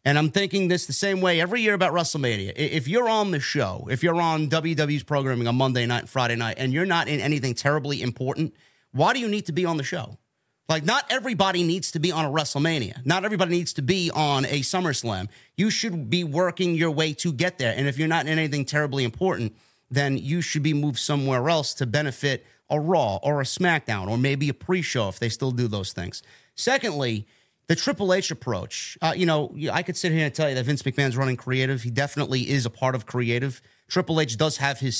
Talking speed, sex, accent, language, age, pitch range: 230 wpm, male, American, English, 30-49, 125-160 Hz